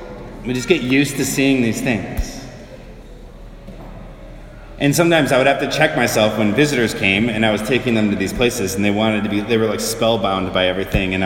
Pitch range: 105-130 Hz